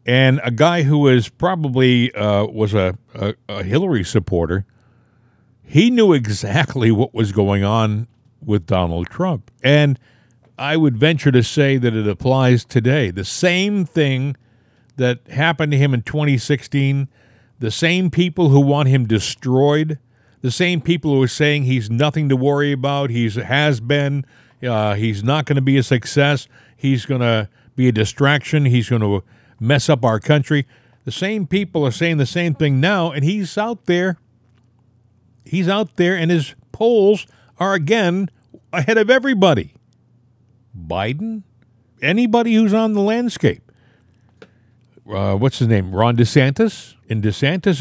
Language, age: English, 50-69